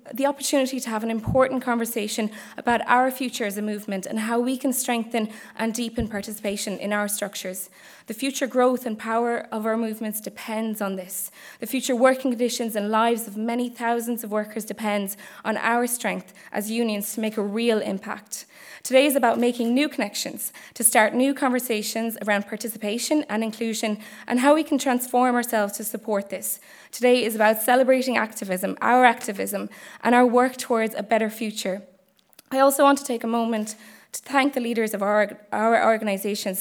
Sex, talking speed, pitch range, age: female, 180 wpm, 210-245 Hz, 20-39